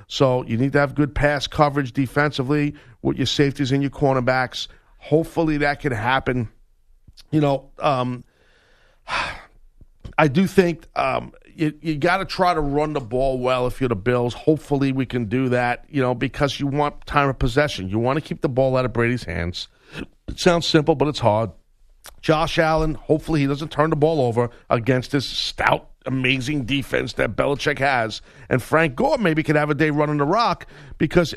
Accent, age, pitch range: American, 50-69, 125-155 Hz